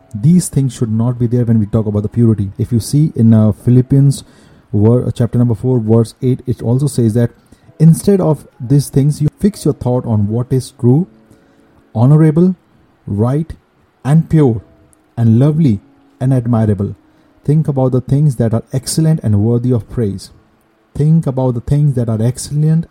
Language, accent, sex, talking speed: English, Indian, male, 170 wpm